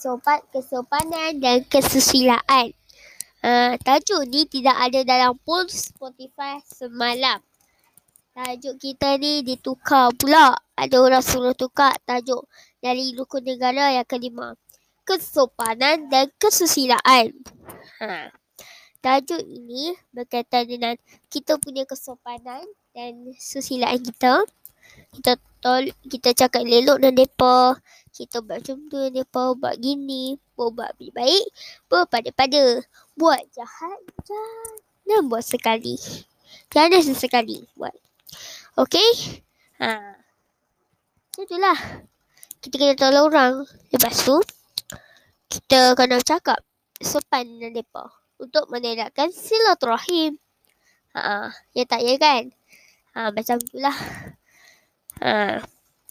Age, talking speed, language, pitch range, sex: 20-39, 105 wpm, Malay, 250-295 Hz, male